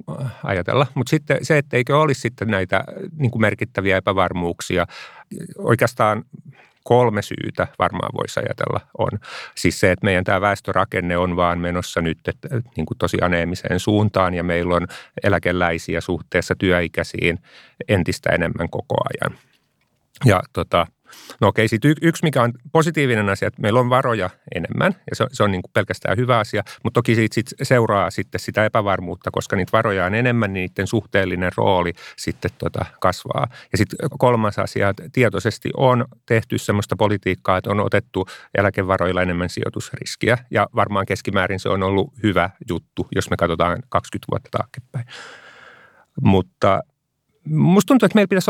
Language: Finnish